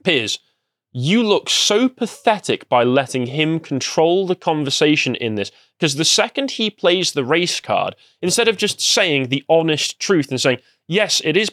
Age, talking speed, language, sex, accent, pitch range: 20-39, 170 wpm, English, male, British, 130-190 Hz